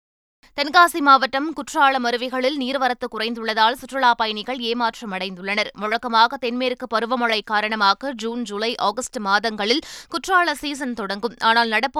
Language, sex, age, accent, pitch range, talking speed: Tamil, female, 20-39, native, 230-270 Hz, 110 wpm